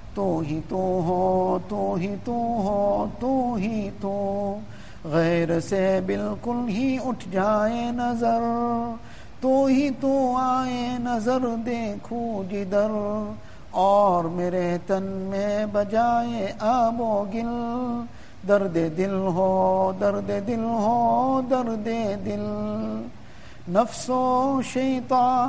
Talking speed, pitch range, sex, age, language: 90 wpm, 200-250 Hz, male, 50-69, English